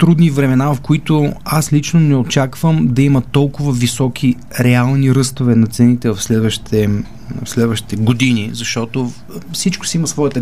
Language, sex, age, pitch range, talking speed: Bulgarian, male, 30-49, 125-160 Hz, 150 wpm